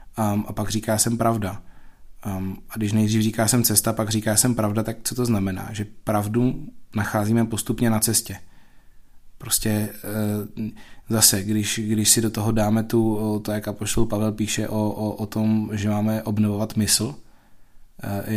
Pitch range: 105-120 Hz